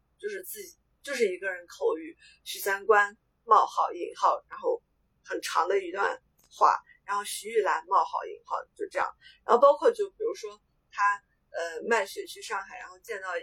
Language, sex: Chinese, female